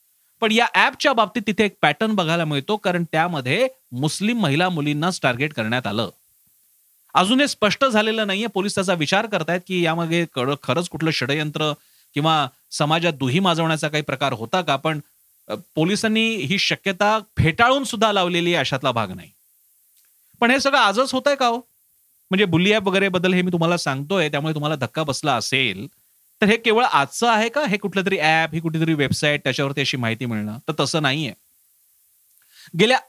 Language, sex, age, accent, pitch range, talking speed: Marathi, male, 40-59, native, 150-210 Hz, 115 wpm